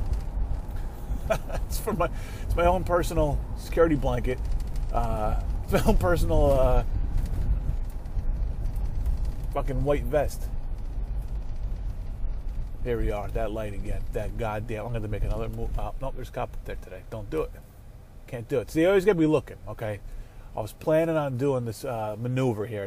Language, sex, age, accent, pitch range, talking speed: English, male, 30-49, American, 105-130 Hz, 165 wpm